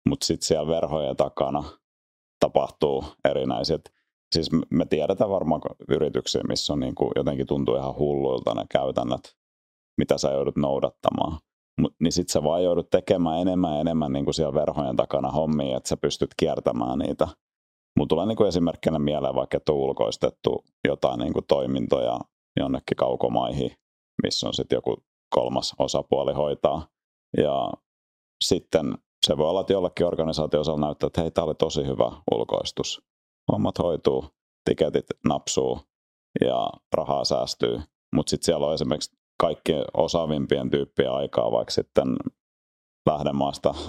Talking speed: 140 wpm